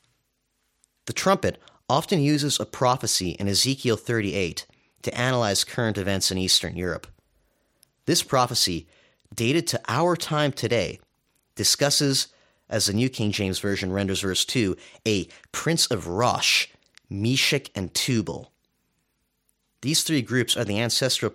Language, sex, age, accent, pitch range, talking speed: English, male, 30-49, American, 95-130 Hz, 130 wpm